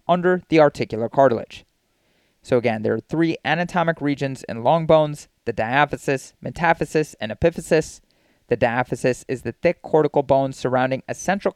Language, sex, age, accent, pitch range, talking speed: English, male, 30-49, American, 125-165 Hz, 150 wpm